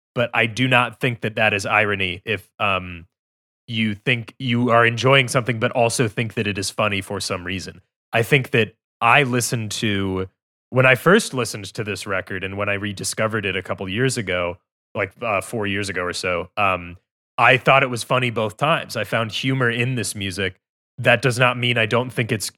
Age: 30-49